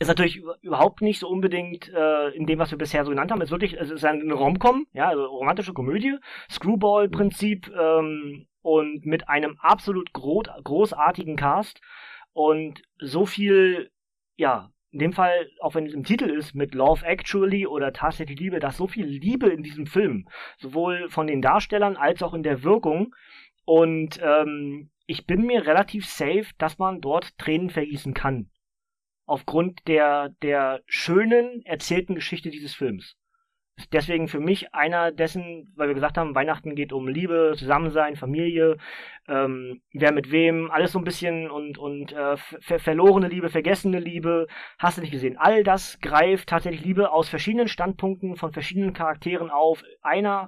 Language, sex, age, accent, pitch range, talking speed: German, male, 30-49, German, 150-185 Hz, 165 wpm